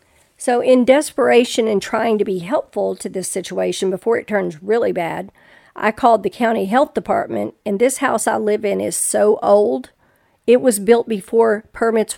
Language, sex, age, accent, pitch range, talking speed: English, female, 50-69, American, 200-235 Hz, 175 wpm